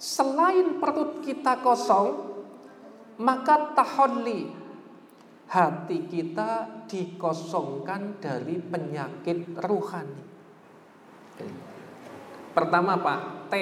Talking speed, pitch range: 65 wpm, 160-210 Hz